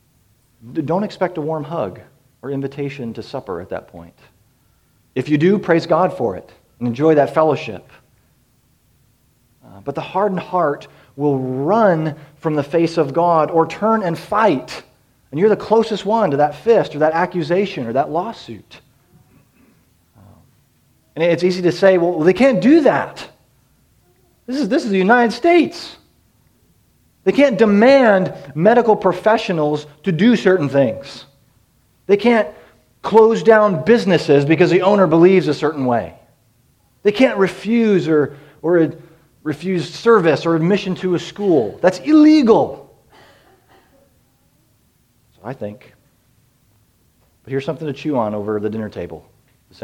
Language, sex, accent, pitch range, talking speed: English, male, American, 130-195 Hz, 140 wpm